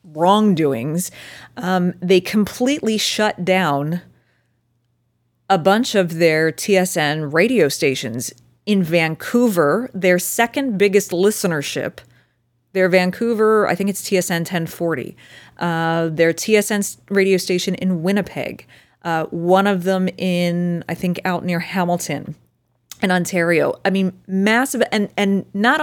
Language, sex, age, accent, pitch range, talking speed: English, female, 30-49, American, 165-205 Hz, 120 wpm